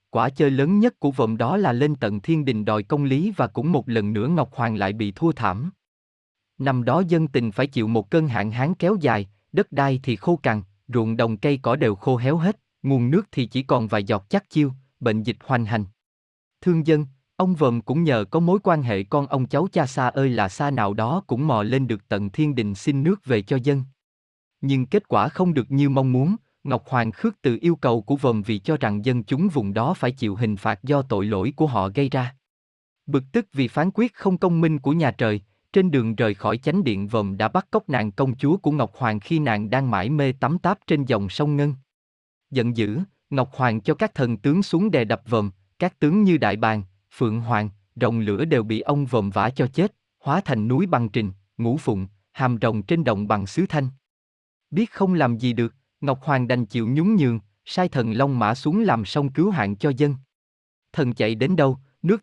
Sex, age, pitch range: male, 20-39, 110-150 Hz